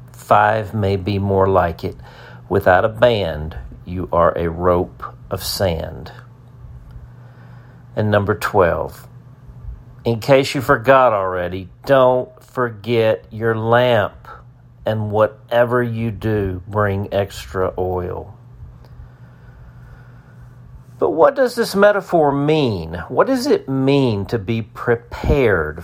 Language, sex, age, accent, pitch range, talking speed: English, male, 50-69, American, 95-125 Hz, 110 wpm